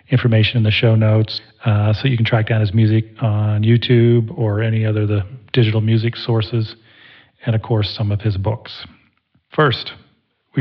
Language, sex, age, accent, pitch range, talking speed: English, male, 40-59, American, 110-125 Hz, 180 wpm